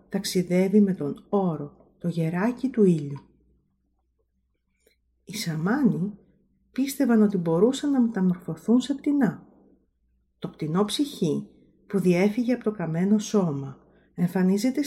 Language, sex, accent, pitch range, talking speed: Greek, female, native, 160-210 Hz, 110 wpm